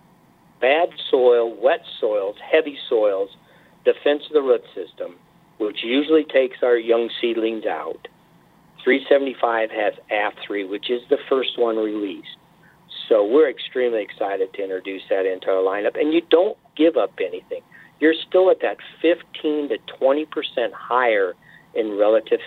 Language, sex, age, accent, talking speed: English, male, 50-69, American, 140 wpm